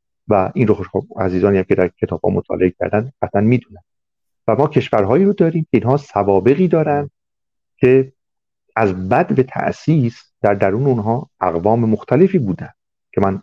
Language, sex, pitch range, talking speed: Persian, male, 95-125 Hz, 145 wpm